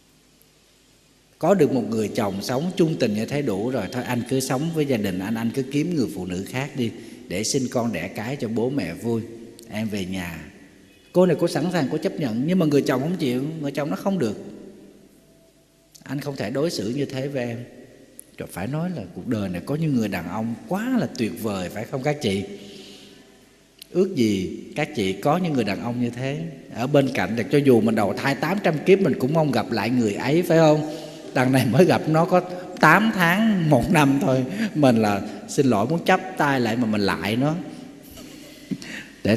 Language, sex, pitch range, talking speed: Vietnamese, male, 115-160 Hz, 215 wpm